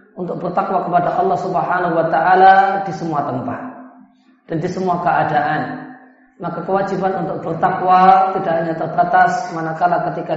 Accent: native